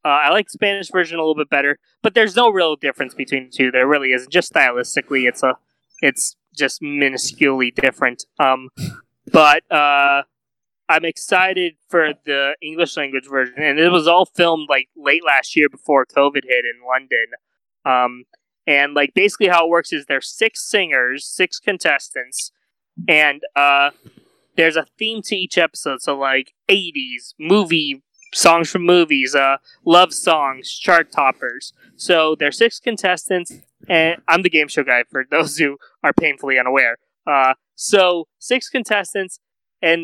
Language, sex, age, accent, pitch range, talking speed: English, male, 20-39, American, 140-180 Hz, 160 wpm